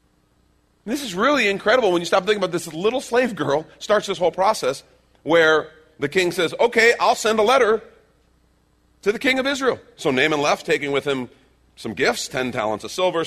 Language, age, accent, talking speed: English, 40-59, American, 195 wpm